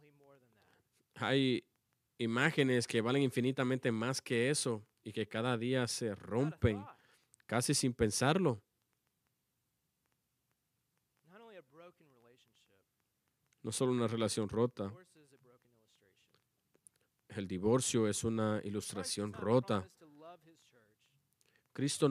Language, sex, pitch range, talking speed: English, male, 110-145 Hz, 80 wpm